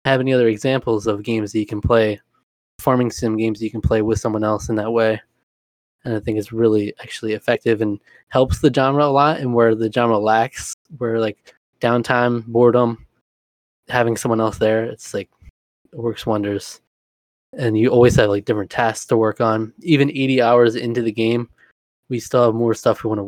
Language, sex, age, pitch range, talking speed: English, male, 20-39, 110-120 Hz, 200 wpm